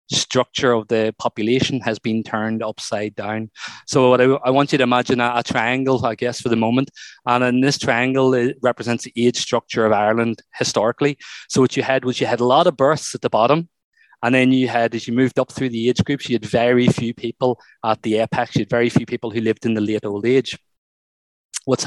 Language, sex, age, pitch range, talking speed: English, male, 20-39, 110-130 Hz, 230 wpm